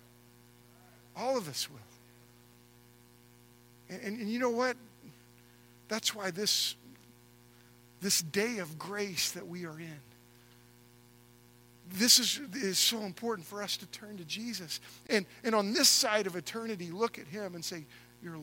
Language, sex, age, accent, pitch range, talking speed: English, male, 50-69, American, 120-200 Hz, 145 wpm